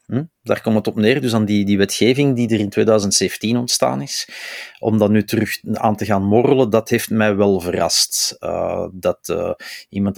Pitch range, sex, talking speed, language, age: 100-120 Hz, male, 200 wpm, Dutch, 30-49